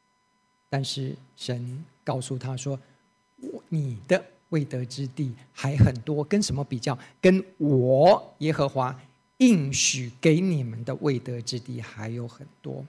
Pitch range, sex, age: 130-185 Hz, male, 50-69